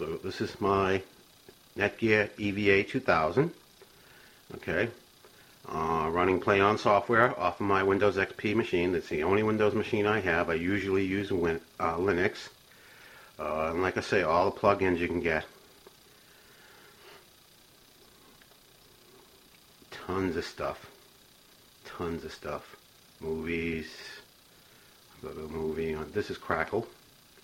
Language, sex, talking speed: English, male, 120 wpm